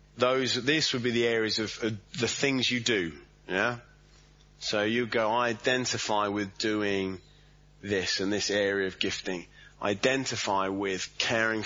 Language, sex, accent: English, male, British